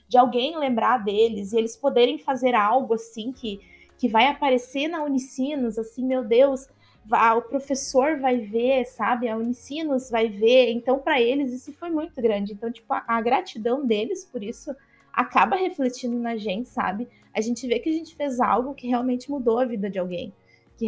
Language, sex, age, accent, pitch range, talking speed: Portuguese, female, 20-39, Brazilian, 220-265 Hz, 185 wpm